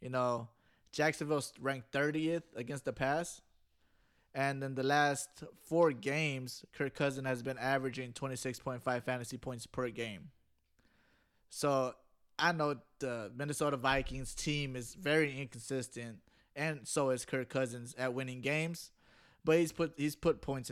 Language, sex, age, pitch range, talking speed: English, male, 20-39, 120-140 Hz, 140 wpm